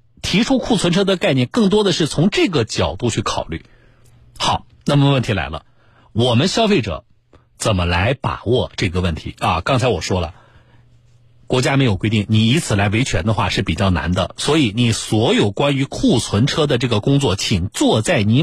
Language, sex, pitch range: Chinese, male, 115-175 Hz